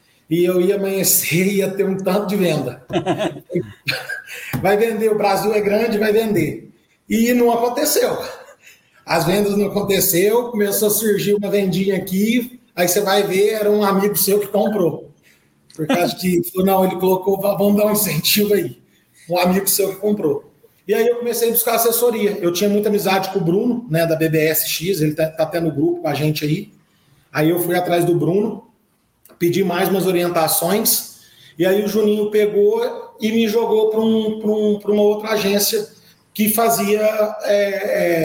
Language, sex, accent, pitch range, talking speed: Portuguese, male, Brazilian, 170-210 Hz, 175 wpm